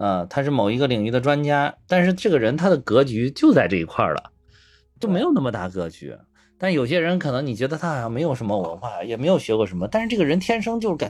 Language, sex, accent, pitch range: Chinese, male, native, 100-155 Hz